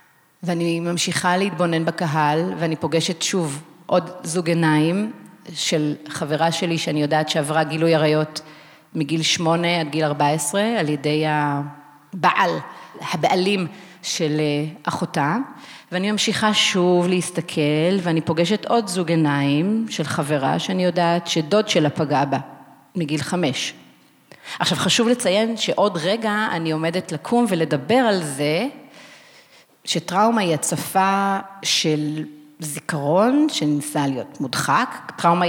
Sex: female